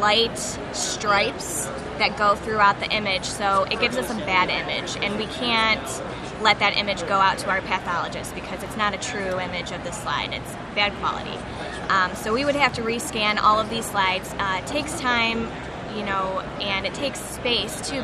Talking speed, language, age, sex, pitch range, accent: 195 wpm, English, 20-39, female, 200-235 Hz, American